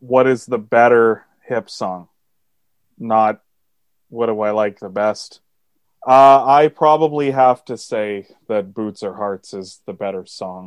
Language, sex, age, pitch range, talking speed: English, male, 20-39, 100-125 Hz, 150 wpm